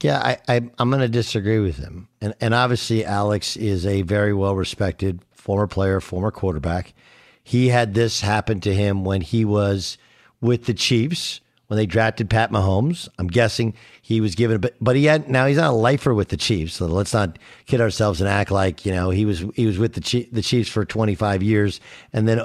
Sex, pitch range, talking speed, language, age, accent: male, 100-125 Hz, 215 wpm, English, 50-69, American